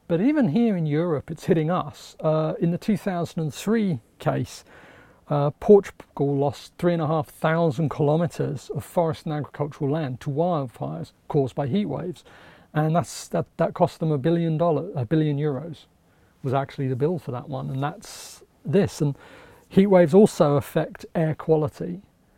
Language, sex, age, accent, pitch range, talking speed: English, male, 40-59, British, 140-165 Hz, 160 wpm